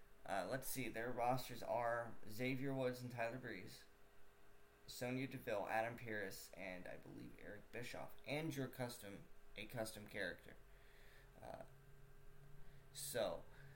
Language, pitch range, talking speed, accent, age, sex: English, 105-135 Hz, 120 wpm, American, 20-39, male